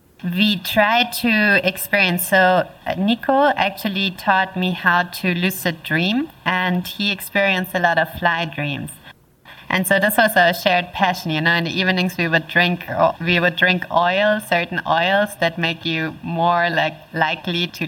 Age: 20-39